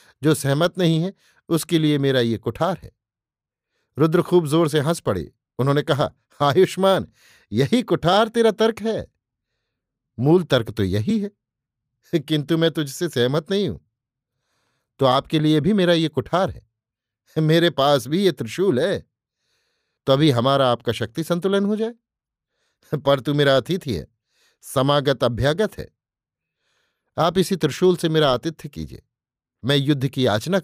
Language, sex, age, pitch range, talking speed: Hindi, male, 50-69, 125-165 Hz, 150 wpm